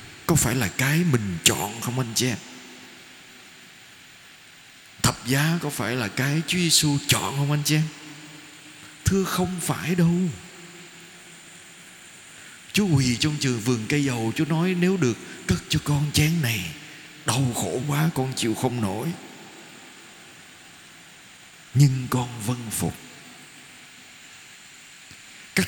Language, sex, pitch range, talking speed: Vietnamese, male, 125-170 Hz, 125 wpm